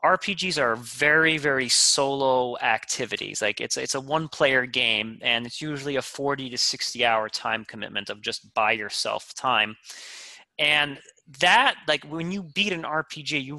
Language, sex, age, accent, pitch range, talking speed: English, male, 30-49, American, 120-155 Hz, 165 wpm